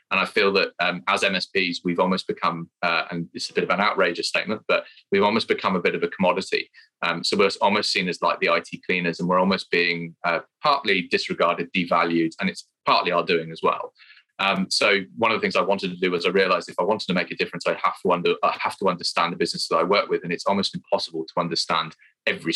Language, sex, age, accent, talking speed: English, male, 20-39, British, 250 wpm